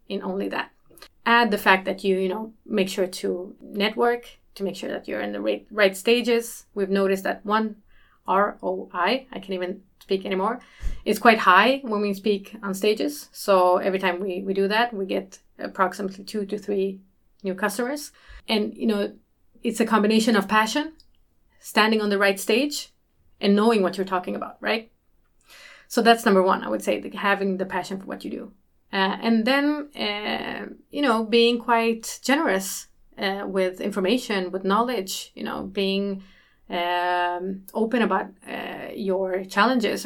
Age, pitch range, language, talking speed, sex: 30-49, 190-225 Hz, Swedish, 170 wpm, female